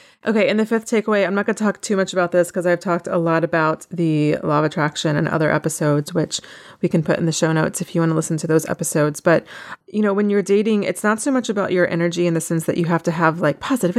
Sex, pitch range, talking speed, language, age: female, 155-185 Hz, 285 wpm, English, 30-49